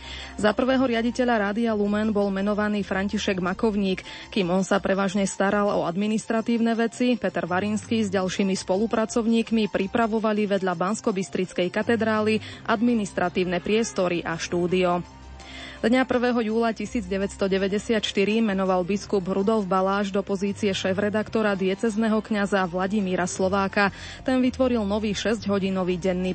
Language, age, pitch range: Slovak, 20-39, 185-220 Hz